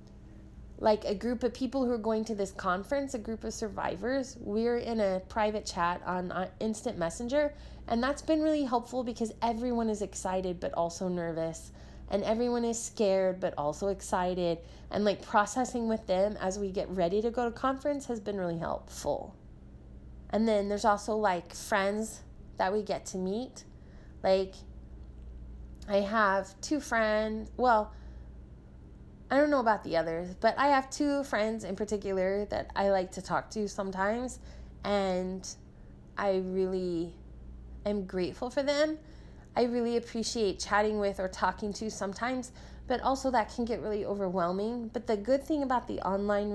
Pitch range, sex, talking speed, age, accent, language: 185-245 Hz, female, 160 wpm, 20-39, American, English